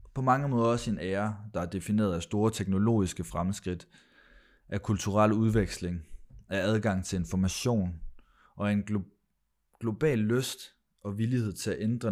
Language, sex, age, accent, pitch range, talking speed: Danish, male, 20-39, native, 85-105 Hz, 155 wpm